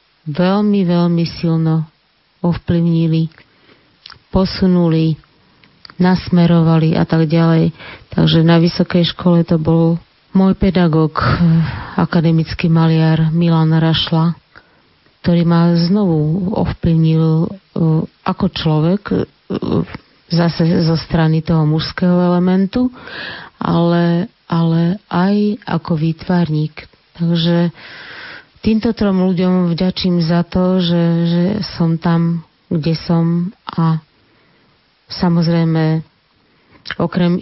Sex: female